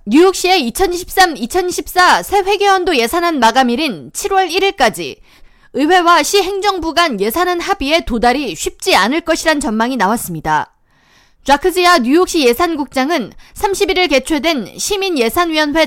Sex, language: female, Korean